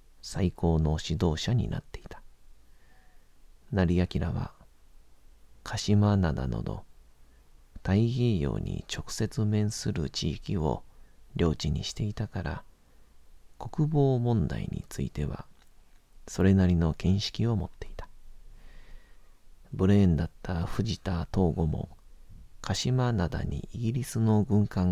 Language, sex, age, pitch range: Japanese, male, 40-59, 75-100 Hz